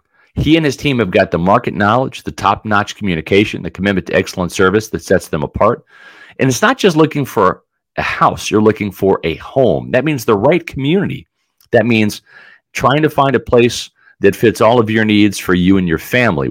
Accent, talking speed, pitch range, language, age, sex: American, 205 wpm, 95-135 Hz, English, 40-59, male